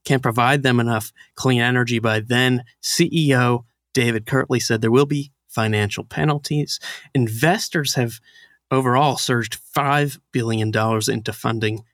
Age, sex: 30-49, male